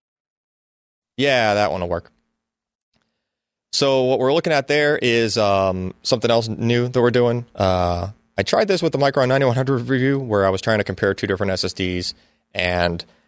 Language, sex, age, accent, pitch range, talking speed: English, male, 30-49, American, 90-115 Hz, 170 wpm